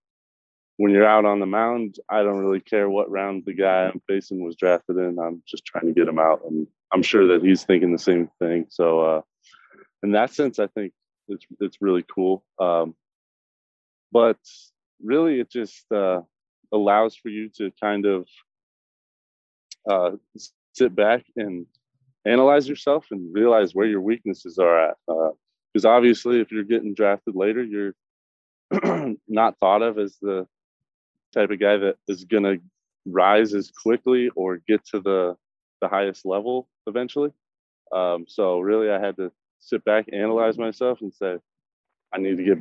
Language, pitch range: English, 90-110 Hz